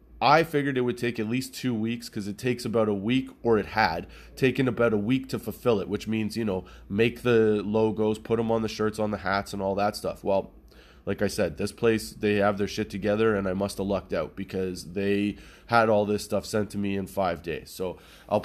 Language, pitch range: English, 105-125 Hz